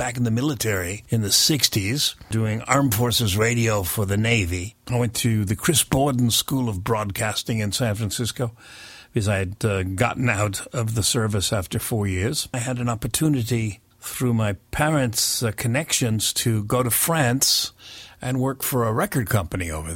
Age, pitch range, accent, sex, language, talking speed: 50-69, 105-125 Hz, American, male, English, 175 wpm